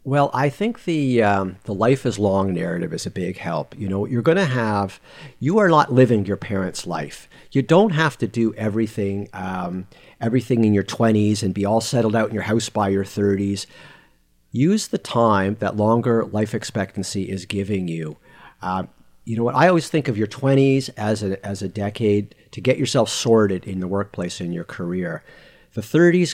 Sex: male